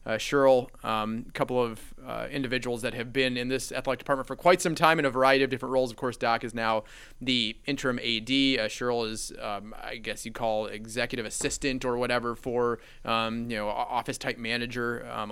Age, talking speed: 30-49, 205 wpm